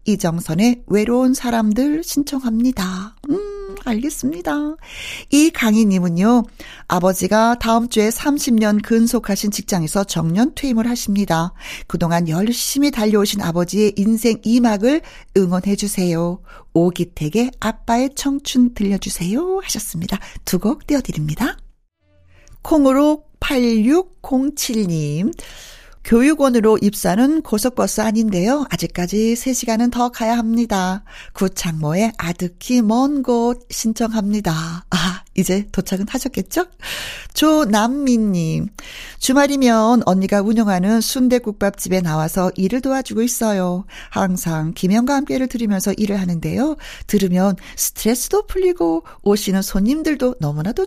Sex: female